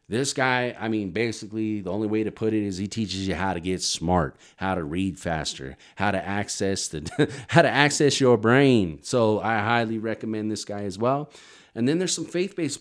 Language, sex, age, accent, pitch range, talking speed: English, male, 30-49, American, 95-120 Hz, 210 wpm